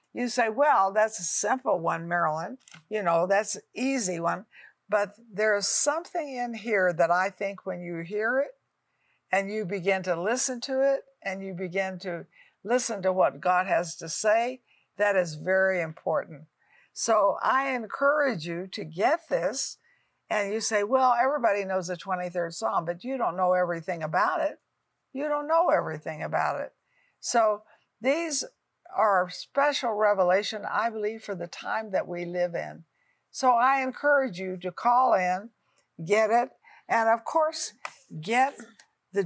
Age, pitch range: 60-79, 180-245 Hz